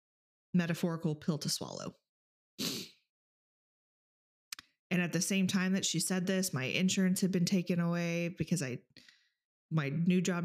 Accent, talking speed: American, 140 wpm